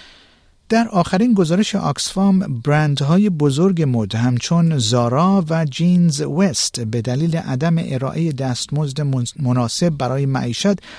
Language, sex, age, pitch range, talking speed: Persian, male, 50-69, 120-165 Hz, 110 wpm